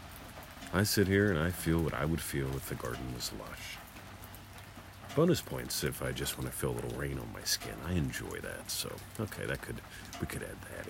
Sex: male